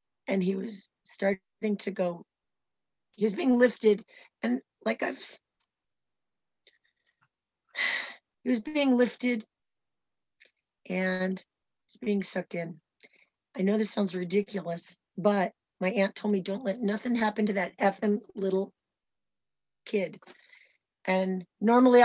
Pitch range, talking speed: 185-245 Hz, 120 wpm